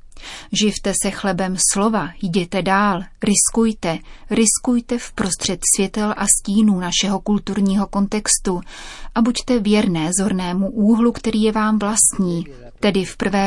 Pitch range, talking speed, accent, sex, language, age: 180-210 Hz, 120 wpm, native, female, Czech, 30-49